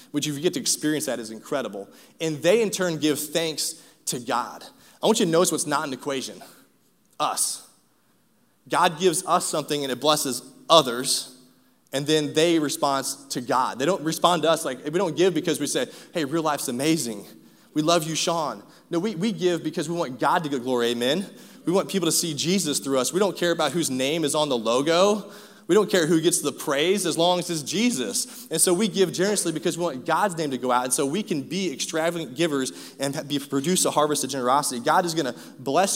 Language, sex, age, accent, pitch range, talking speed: English, male, 20-39, American, 135-175 Hz, 225 wpm